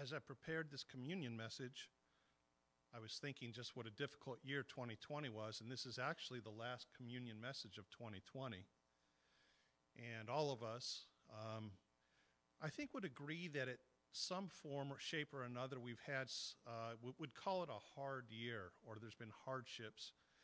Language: English